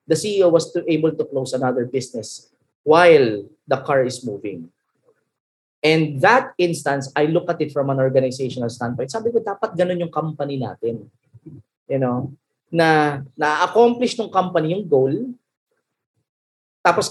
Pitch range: 130-175 Hz